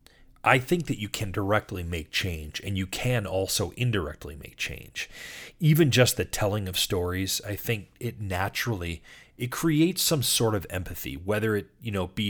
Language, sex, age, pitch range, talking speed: English, male, 30-49, 85-110 Hz, 175 wpm